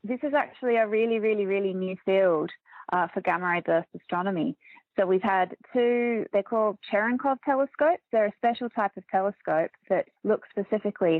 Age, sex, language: 20-39, female, English